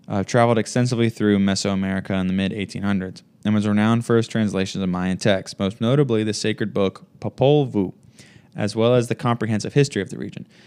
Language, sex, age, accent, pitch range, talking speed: English, male, 20-39, American, 100-110 Hz, 185 wpm